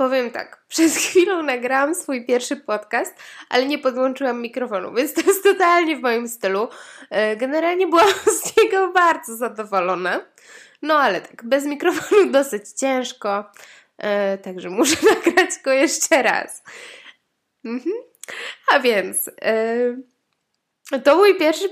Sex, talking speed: female, 120 wpm